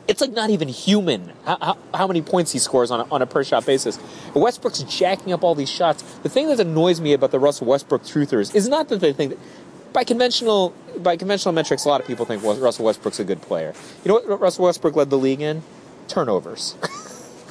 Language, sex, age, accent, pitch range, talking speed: English, male, 30-49, American, 155-220 Hz, 215 wpm